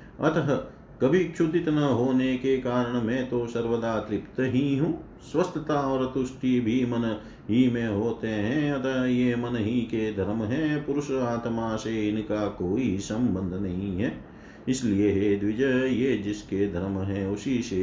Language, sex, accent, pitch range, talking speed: Hindi, male, native, 100-130 Hz, 155 wpm